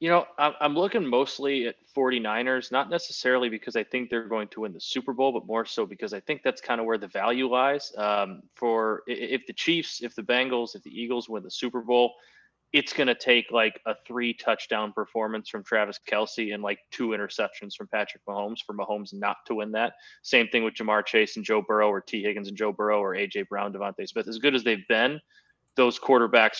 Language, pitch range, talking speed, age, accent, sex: English, 110-130 Hz, 220 wpm, 20-39, American, male